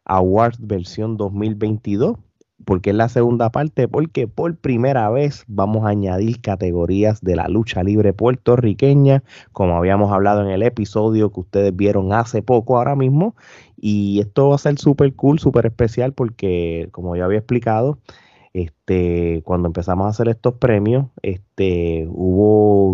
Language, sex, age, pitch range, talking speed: Spanish, male, 20-39, 95-115 Hz, 150 wpm